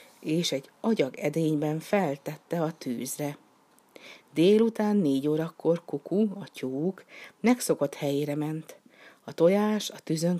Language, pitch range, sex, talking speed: Hungarian, 145-195 Hz, female, 110 wpm